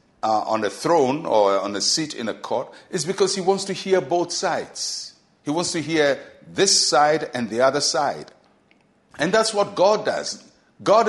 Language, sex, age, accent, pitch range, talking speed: English, male, 60-79, Nigerian, 140-190 Hz, 190 wpm